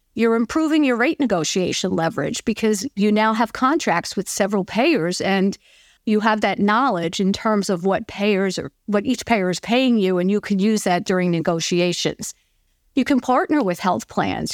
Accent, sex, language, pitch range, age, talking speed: American, female, English, 185-235 Hz, 50-69, 180 wpm